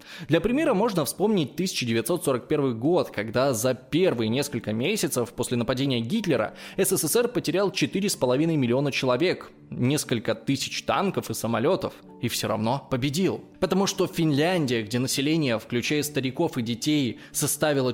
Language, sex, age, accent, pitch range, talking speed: Russian, male, 20-39, native, 125-175 Hz, 125 wpm